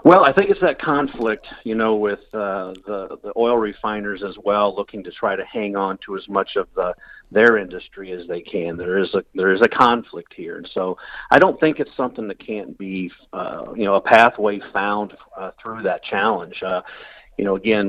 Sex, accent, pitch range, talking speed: male, American, 95-115 Hz, 215 wpm